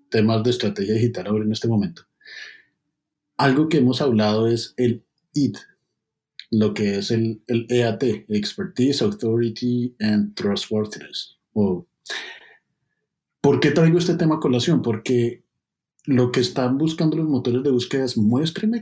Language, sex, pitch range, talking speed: Spanish, male, 115-160 Hz, 140 wpm